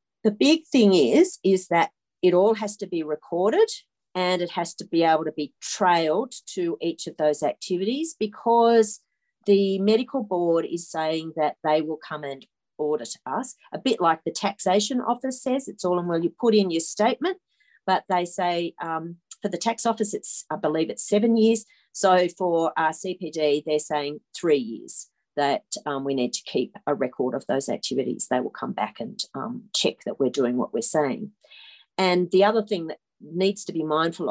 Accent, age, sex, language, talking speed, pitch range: Australian, 40-59, female, English, 190 wpm, 160-215 Hz